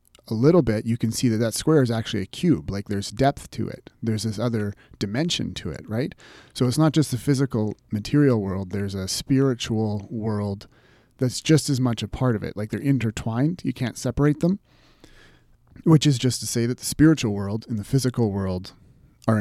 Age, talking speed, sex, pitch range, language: 30-49, 205 wpm, male, 105-130 Hz, English